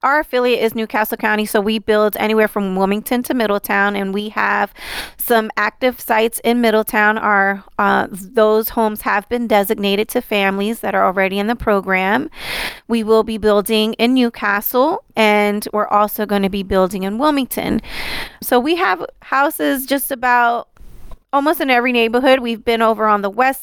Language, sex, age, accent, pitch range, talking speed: English, female, 20-39, American, 205-245 Hz, 170 wpm